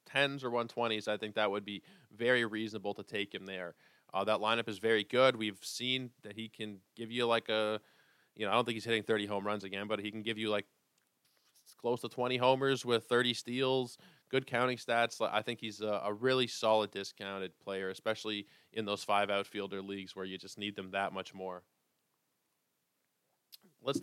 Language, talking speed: English, 195 wpm